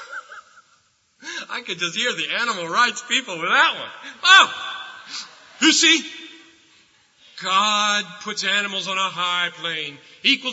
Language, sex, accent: English, male, American